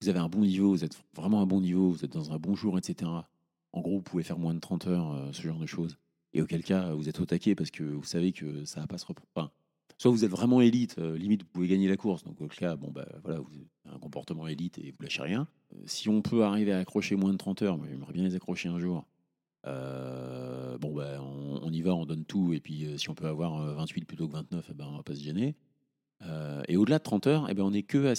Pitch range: 80-110 Hz